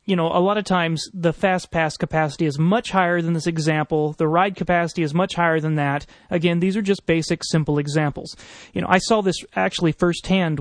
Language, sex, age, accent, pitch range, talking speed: English, male, 30-49, American, 155-190 Hz, 215 wpm